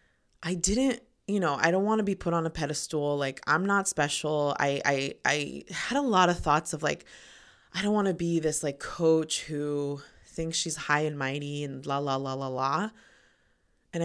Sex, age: female, 20-39